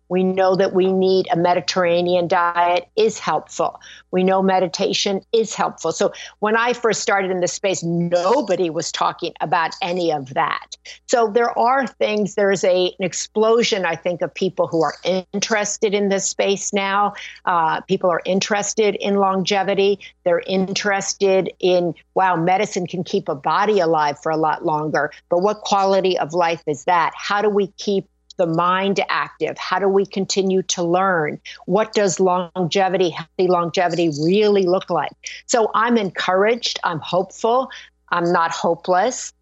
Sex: female